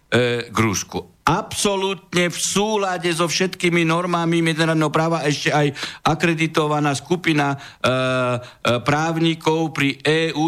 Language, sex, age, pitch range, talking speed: Slovak, male, 60-79, 105-155 Hz, 110 wpm